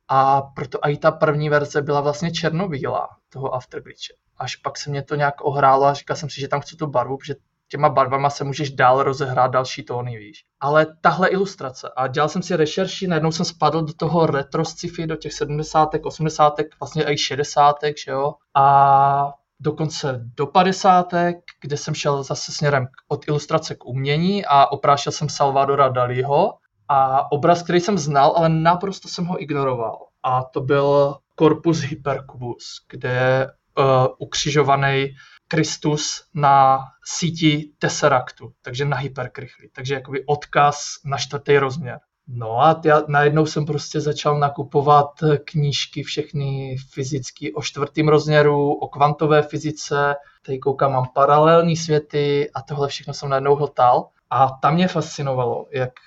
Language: Czech